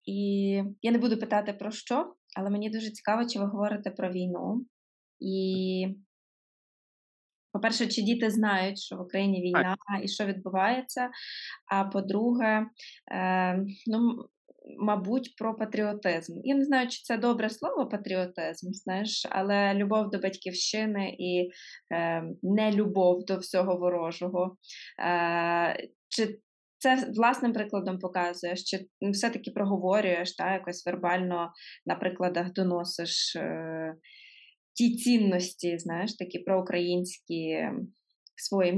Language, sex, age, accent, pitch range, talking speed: Ukrainian, female, 20-39, native, 185-225 Hz, 110 wpm